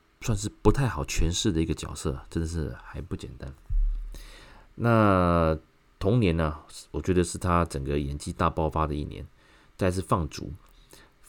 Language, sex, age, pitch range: Chinese, male, 30-49, 75-100 Hz